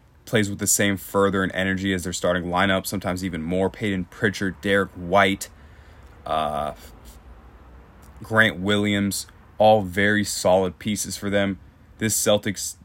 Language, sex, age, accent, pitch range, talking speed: English, male, 20-39, American, 80-105 Hz, 135 wpm